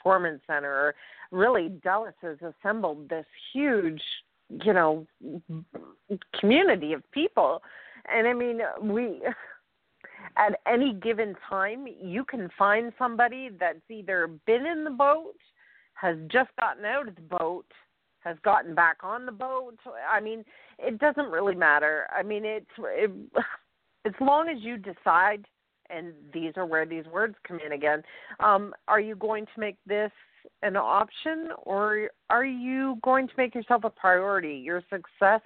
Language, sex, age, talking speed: English, female, 40-59, 150 wpm